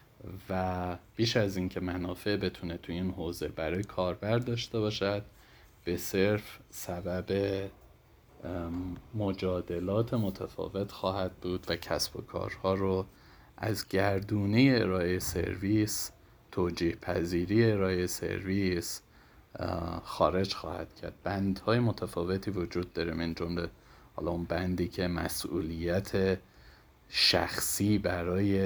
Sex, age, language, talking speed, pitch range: male, 30-49, Persian, 100 wpm, 85-100 Hz